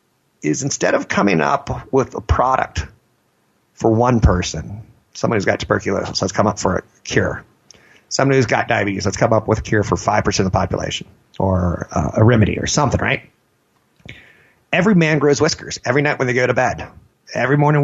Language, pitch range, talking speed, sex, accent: English, 95-130 Hz, 185 wpm, male, American